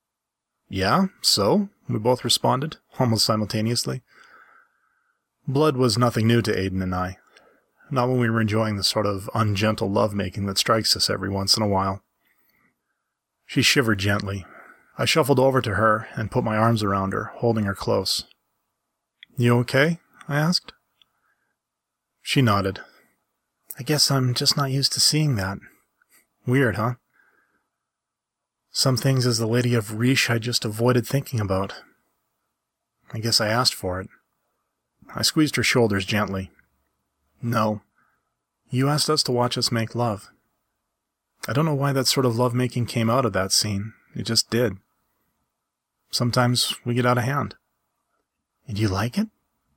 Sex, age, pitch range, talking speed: male, 30-49, 100-130 Hz, 150 wpm